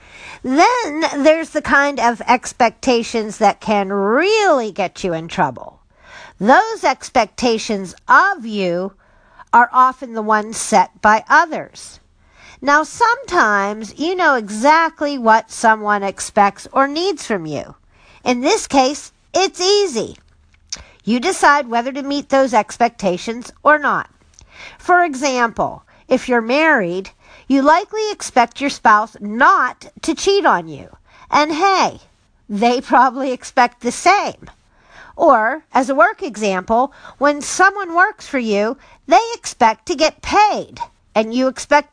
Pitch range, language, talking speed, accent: 215-320 Hz, English, 130 wpm, American